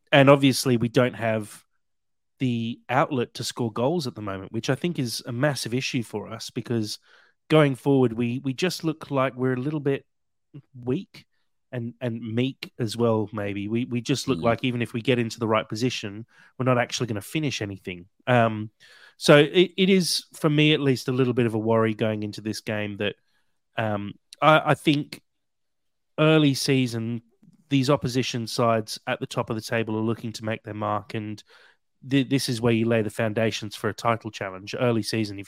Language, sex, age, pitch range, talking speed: English, male, 30-49, 110-135 Hz, 200 wpm